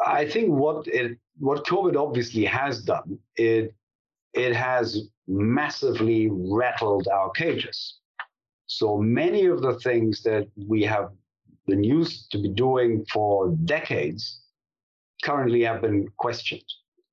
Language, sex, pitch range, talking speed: English, male, 110-145 Hz, 125 wpm